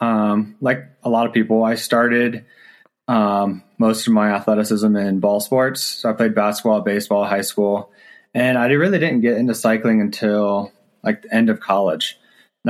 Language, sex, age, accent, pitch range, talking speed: English, male, 20-39, American, 105-130 Hz, 175 wpm